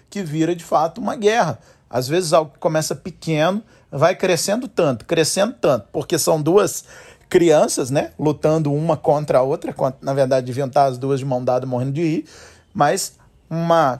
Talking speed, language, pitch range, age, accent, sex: 175 wpm, Portuguese, 135-175 Hz, 40-59, Brazilian, male